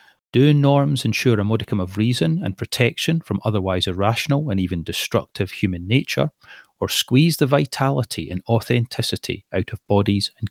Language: English